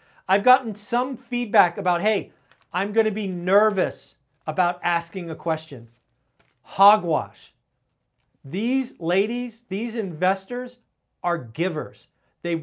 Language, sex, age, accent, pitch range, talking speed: English, male, 40-59, American, 165-220 Hz, 105 wpm